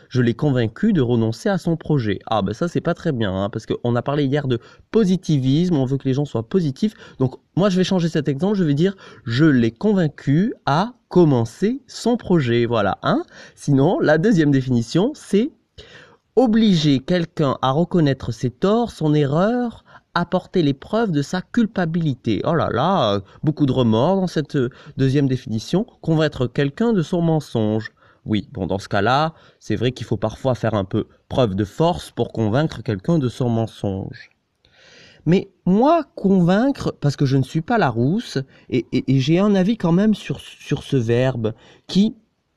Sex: male